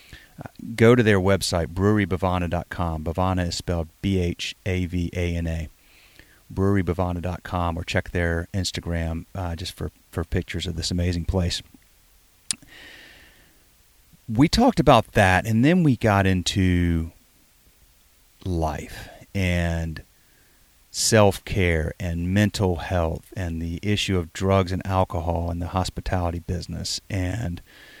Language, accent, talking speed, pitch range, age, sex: English, American, 105 wpm, 85-110 Hz, 30-49, male